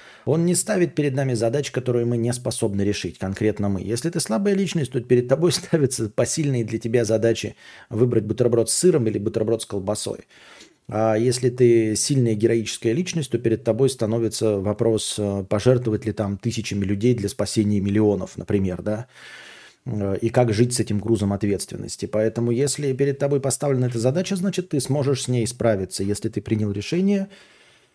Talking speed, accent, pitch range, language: 170 wpm, native, 105-130 Hz, Russian